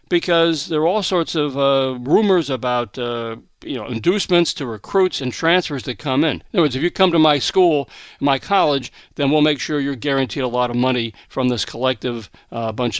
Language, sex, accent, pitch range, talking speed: English, male, American, 135-200 Hz, 210 wpm